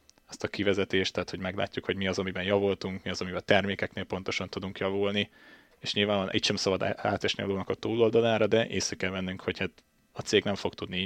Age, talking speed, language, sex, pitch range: 20-39, 210 wpm, Hungarian, male, 90-100 Hz